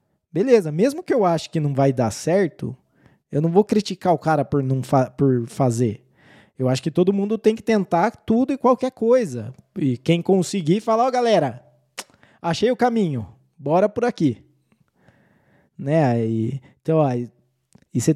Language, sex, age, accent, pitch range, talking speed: Portuguese, male, 20-39, Brazilian, 135-190 Hz, 170 wpm